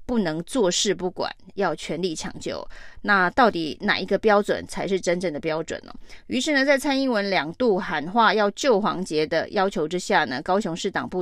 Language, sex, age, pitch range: Chinese, female, 30-49, 175-220 Hz